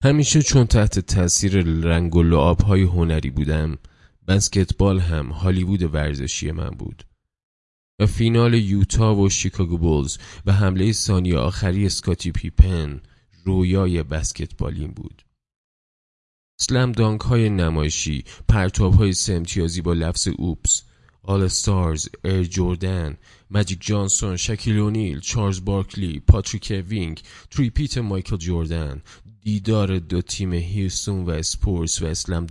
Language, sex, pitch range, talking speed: Persian, male, 80-100 Hz, 115 wpm